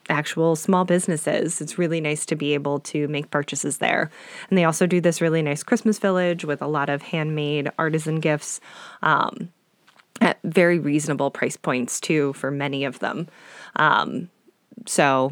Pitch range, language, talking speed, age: 155-210 Hz, English, 165 wpm, 20-39